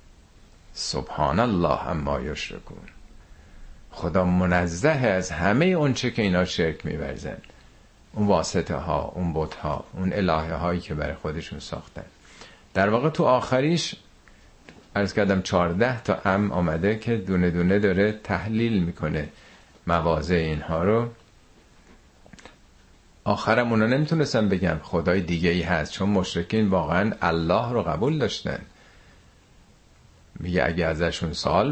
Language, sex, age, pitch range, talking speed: Persian, male, 50-69, 85-115 Hz, 120 wpm